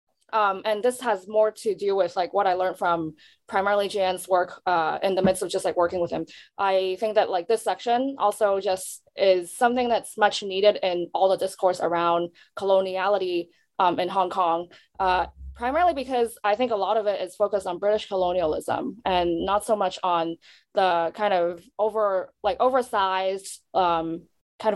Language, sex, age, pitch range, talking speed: English, female, 20-39, 180-215 Hz, 180 wpm